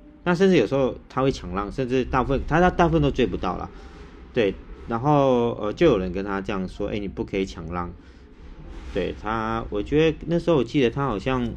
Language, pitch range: Chinese, 85-130 Hz